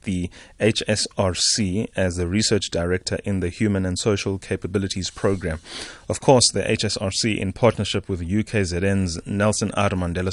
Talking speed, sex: 135 wpm, male